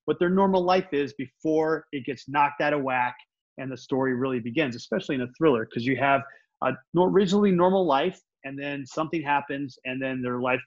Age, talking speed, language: 30-49, 200 wpm, English